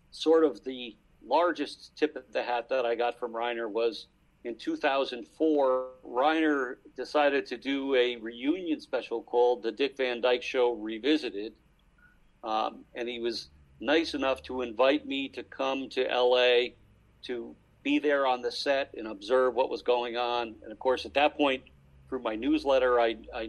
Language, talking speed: English, 170 wpm